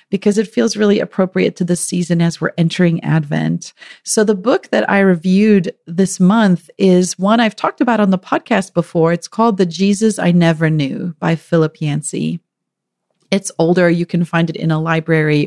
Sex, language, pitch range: female, English, 160-205 Hz